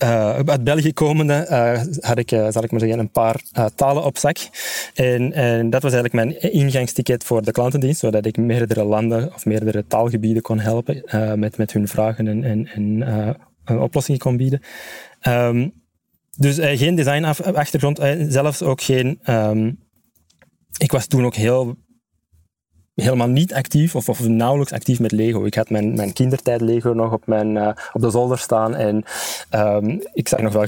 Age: 20-39